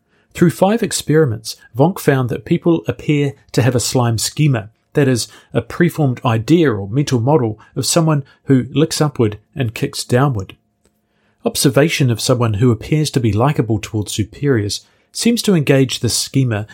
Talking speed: 160 wpm